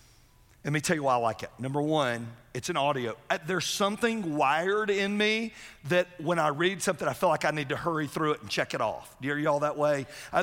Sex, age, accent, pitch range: male, 40-59, American, 125-175 Hz